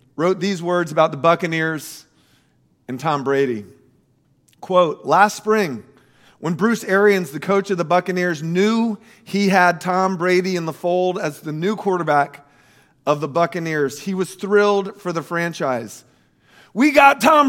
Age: 40-59